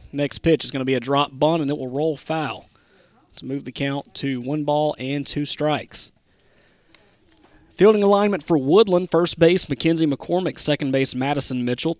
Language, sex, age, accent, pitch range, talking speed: English, male, 30-49, American, 135-165 Hz, 180 wpm